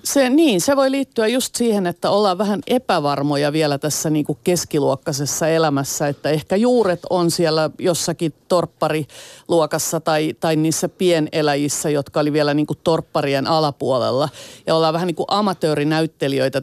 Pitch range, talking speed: 145-170 Hz, 140 wpm